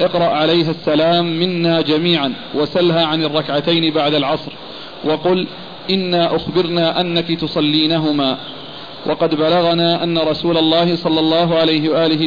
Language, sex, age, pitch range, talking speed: Arabic, male, 40-59, 155-170 Hz, 115 wpm